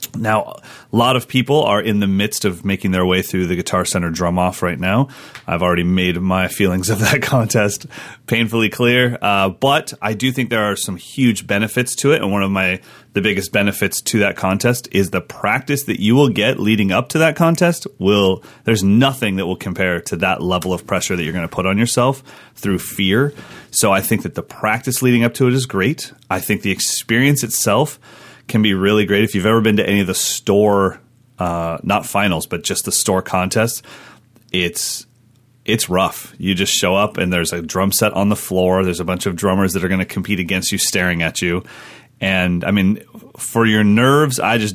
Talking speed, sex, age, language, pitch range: 215 wpm, male, 30-49, English, 95-120 Hz